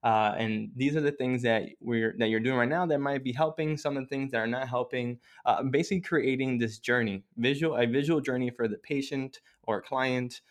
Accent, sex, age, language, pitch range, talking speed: American, male, 20-39, English, 110-130 Hz, 225 wpm